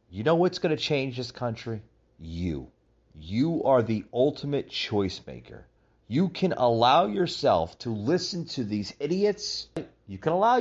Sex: male